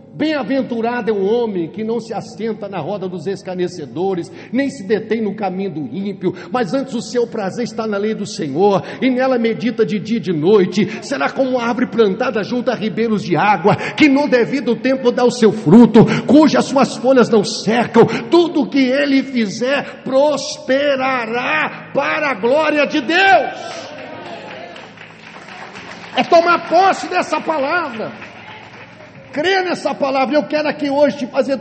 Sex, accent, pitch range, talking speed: male, Brazilian, 215-290 Hz, 160 wpm